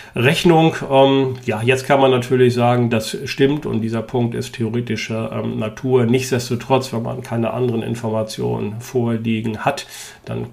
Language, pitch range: German, 110-130 Hz